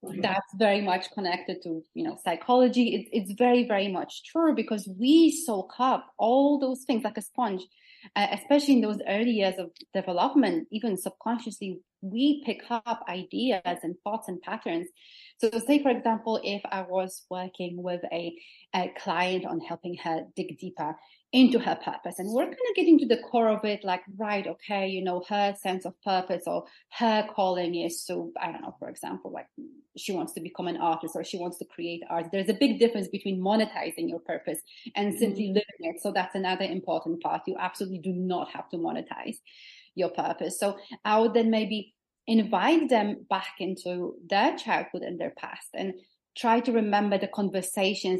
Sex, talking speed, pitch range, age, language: female, 185 wpm, 180-230 Hz, 30-49, English